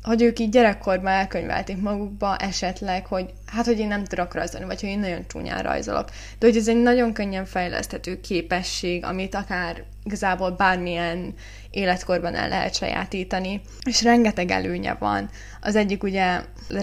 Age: 20-39